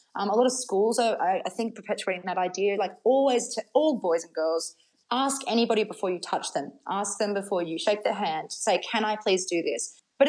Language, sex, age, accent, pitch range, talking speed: English, female, 20-39, Australian, 185-240 Hz, 230 wpm